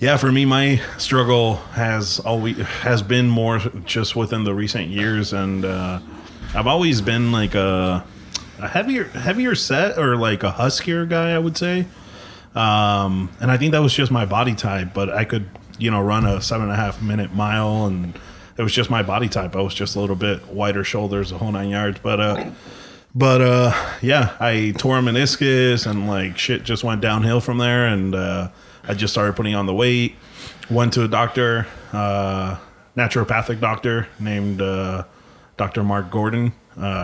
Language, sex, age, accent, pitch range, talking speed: English, male, 30-49, American, 100-120 Hz, 190 wpm